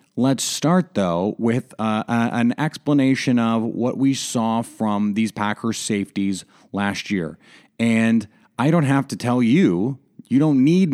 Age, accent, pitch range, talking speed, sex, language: 30-49, American, 105-135 Hz, 150 wpm, male, English